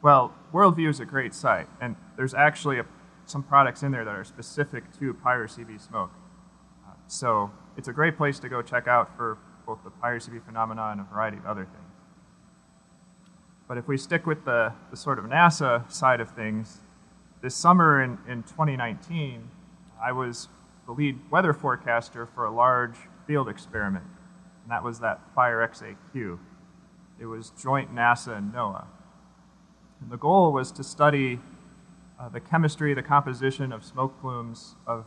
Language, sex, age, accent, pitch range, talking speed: English, male, 30-49, American, 120-150 Hz, 165 wpm